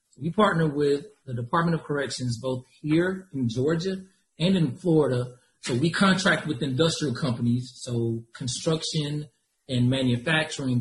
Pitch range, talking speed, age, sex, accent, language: 125-160 Hz, 135 wpm, 40-59, male, American, English